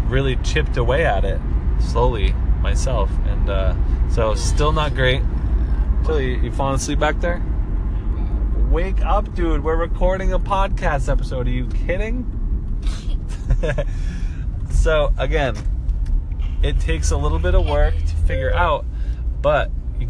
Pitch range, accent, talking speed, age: 80-125 Hz, American, 135 wpm, 20-39